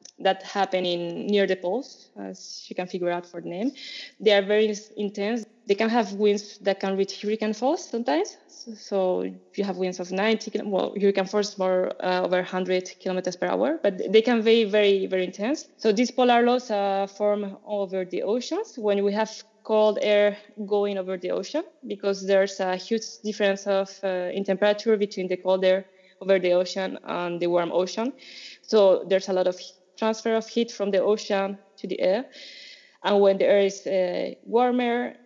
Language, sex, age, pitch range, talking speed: English, female, 20-39, 185-220 Hz, 190 wpm